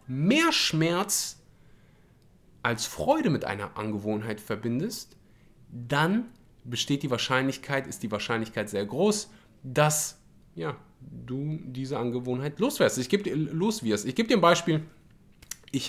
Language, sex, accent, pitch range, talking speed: German, male, German, 120-155 Hz, 110 wpm